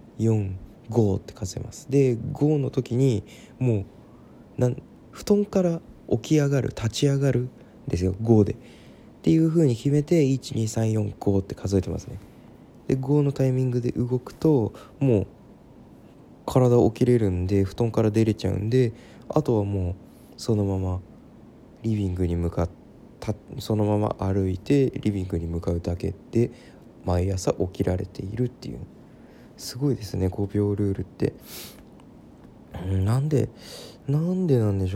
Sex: male